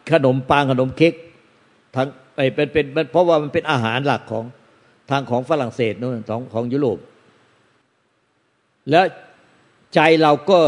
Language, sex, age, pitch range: Thai, male, 60-79, 120-155 Hz